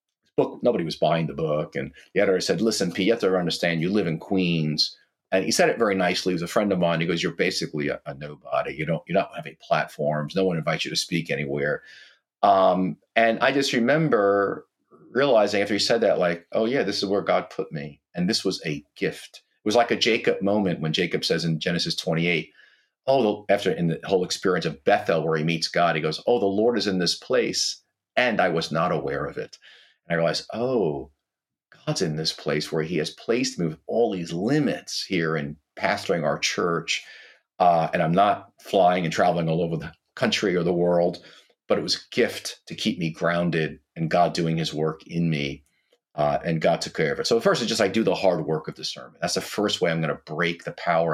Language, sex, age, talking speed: English, male, 40-59, 230 wpm